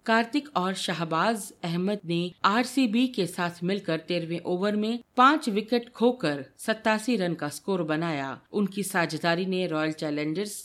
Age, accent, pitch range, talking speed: 50-69, native, 160-225 Hz, 140 wpm